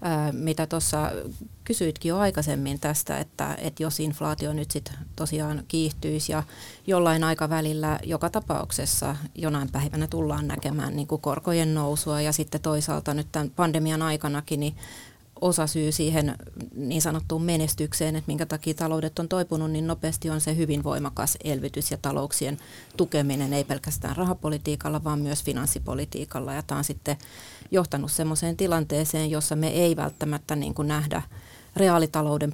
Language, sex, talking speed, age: Finnish, female, 140 wpm, 30-49